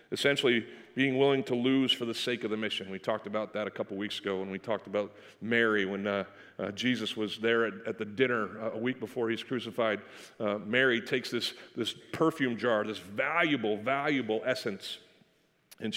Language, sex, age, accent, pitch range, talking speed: English, male, 40-59, American, 115-175 Hz, 190 wpm